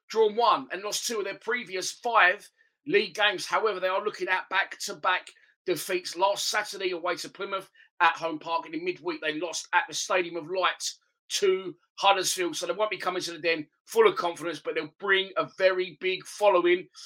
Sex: male